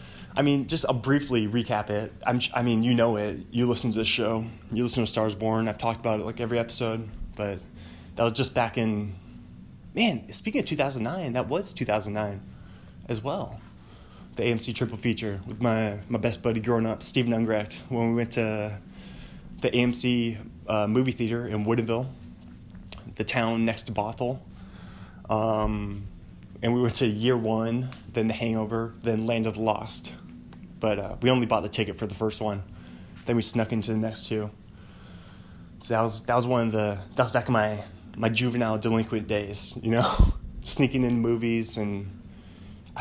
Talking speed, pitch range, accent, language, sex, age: 180 wpm, 105-120 Hz, American, English, male, 20-39